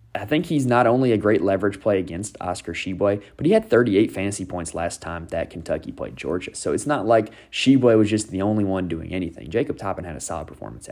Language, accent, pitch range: English, American, 90-125 Hz